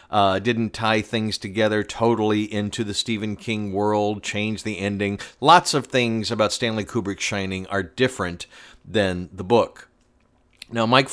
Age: 40-59